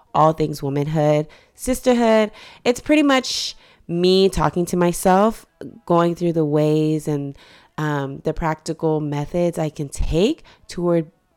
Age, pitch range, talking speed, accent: 20-39, 150-185 Hz, 125 wpm, American